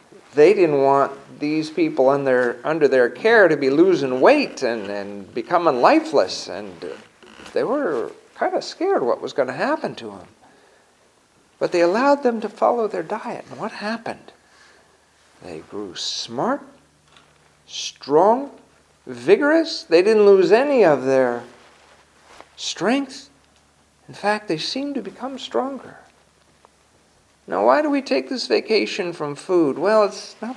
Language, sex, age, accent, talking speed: English, male, 50-69, American, 140 wpm